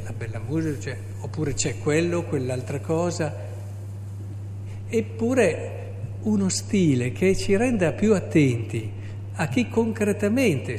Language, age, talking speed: Italian, 60-79, 105 wpm